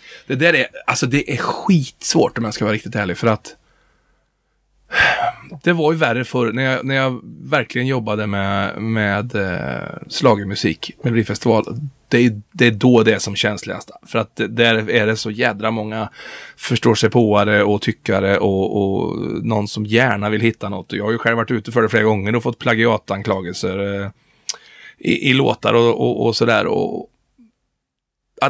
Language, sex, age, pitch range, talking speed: Swedish, male, 20-39, 105-125 Hz, 180 wpm